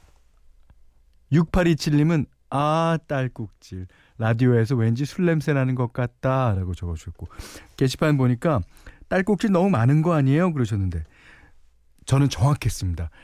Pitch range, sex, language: 90-145 Hz, male, Korean